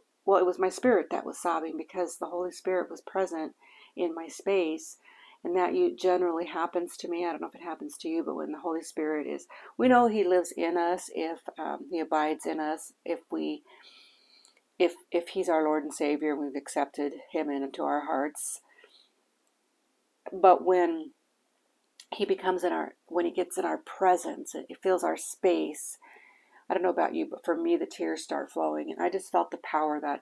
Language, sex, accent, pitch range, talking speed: English, female, American, 155-190 Hz, 200 wpm